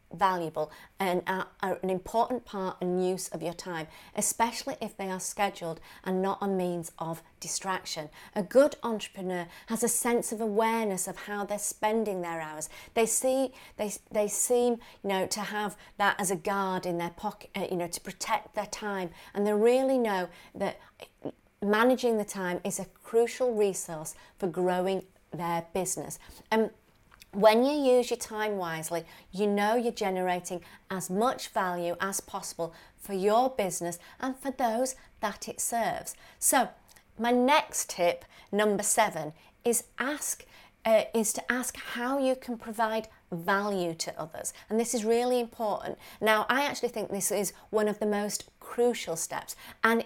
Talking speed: 165 wpm